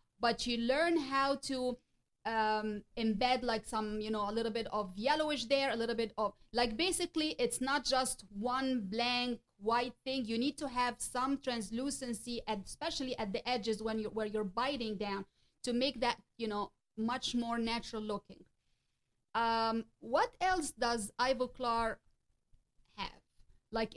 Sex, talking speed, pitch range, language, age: female, 160 wpm, 220-260 Hz, English, 30-49